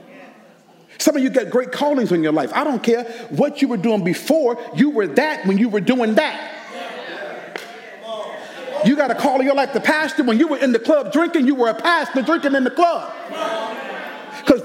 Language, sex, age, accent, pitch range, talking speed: English, male, 40-59, American, 250-345 Hz, 205 wpm